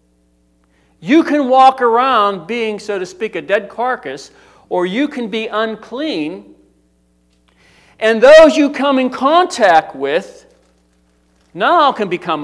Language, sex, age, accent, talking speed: English, male, 50-69, American, 125 wpm